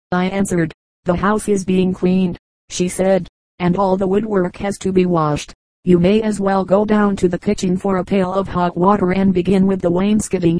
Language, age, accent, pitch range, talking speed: English, 40-59, American, 180-195 Hz, 210 wpm